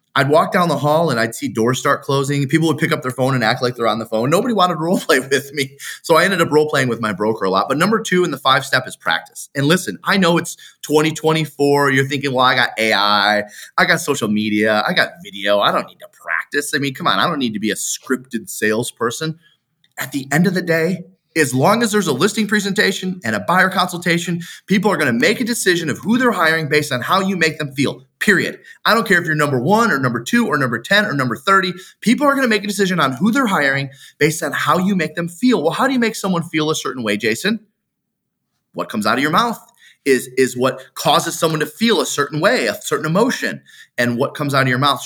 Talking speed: 260 wpm